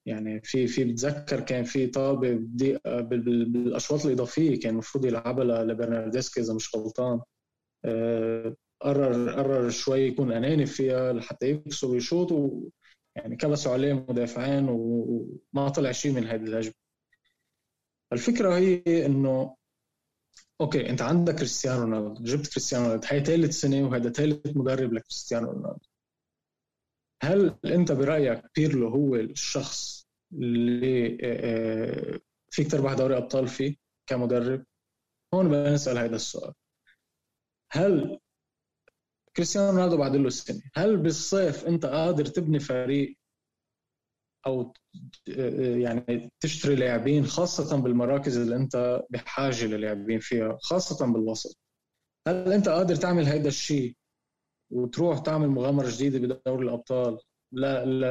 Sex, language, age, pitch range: male, Arabic, 20-39, 120-145 Hz